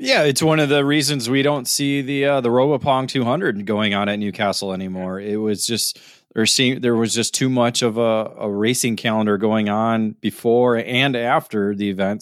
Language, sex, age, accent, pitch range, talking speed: English, male, 20-39, American, 110-125 Hz, 200 wpm